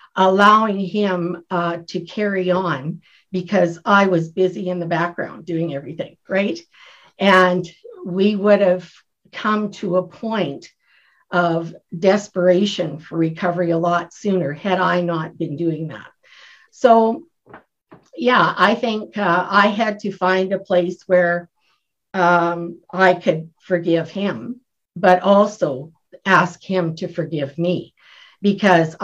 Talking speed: 130 wpm